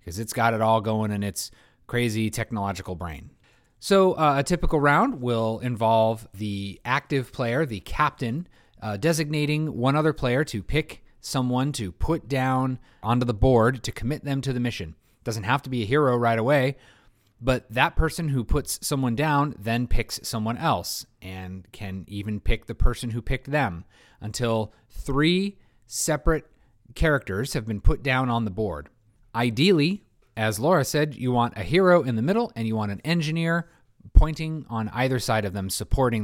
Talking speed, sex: 175 wpm, male